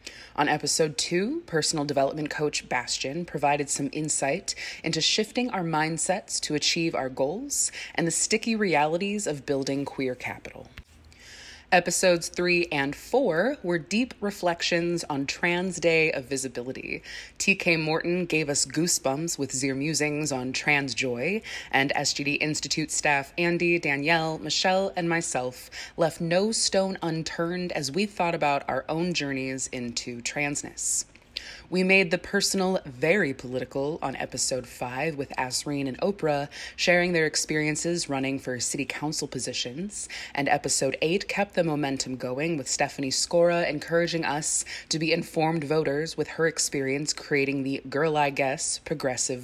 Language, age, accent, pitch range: English, 20-39, American, 135-170 Hz